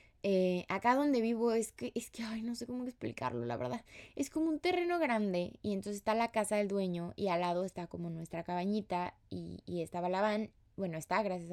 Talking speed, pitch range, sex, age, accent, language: 220 wpm, 175-220 Hz, female, 20-39, Mexican, Spanish